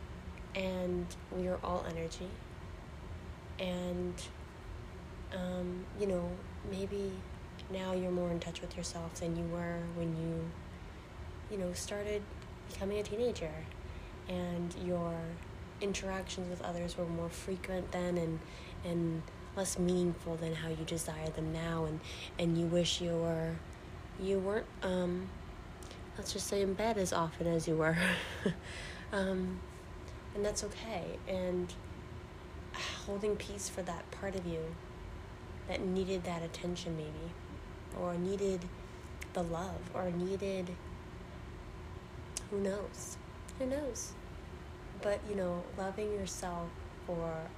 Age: 20-39